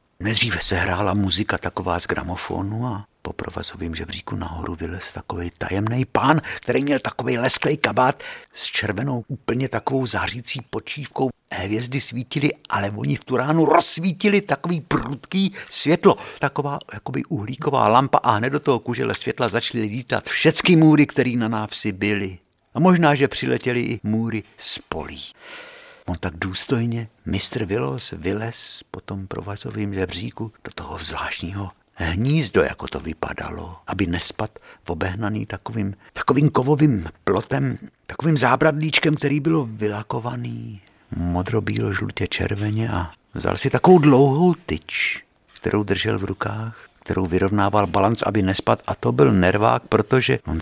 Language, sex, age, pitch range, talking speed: Czech, male, 50-69, 100-135 Hz, 135 wpm